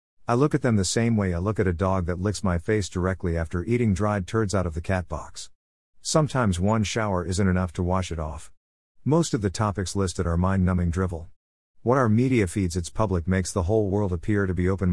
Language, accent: English, American